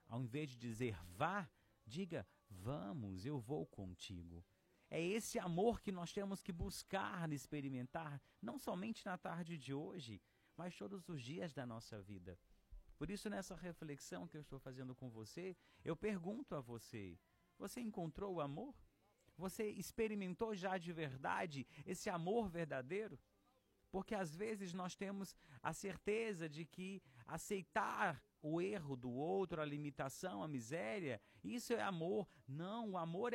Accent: Brazilian